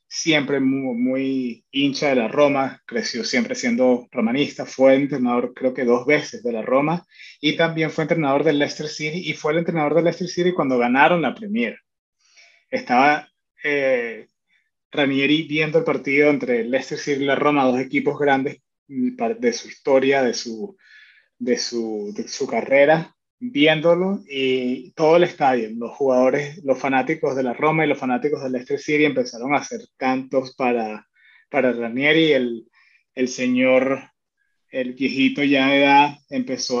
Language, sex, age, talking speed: Spanish, male, 30-49, 160 wpm